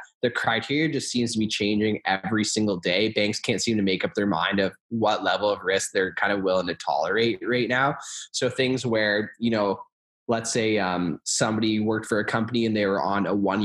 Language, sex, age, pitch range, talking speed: English, male, 10-29, 100-120 Hz, 220 wpm